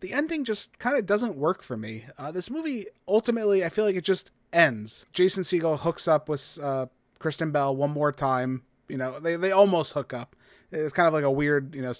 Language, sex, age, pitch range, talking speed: English, male, 30-49, 140-180 Hz, 225 wpm